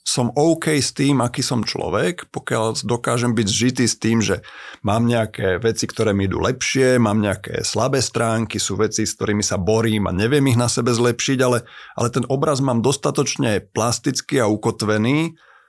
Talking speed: 175 wpm